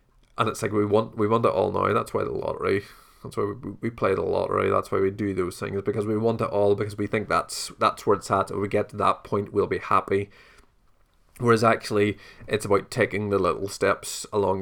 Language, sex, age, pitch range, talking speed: English, male, 30-49, 105-125 Hz, 240 wpm